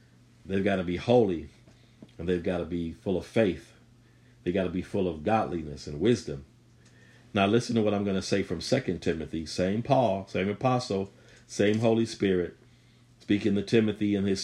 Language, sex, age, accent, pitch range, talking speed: English, male, 50-69, American, 105-120 Hz, 185 wpm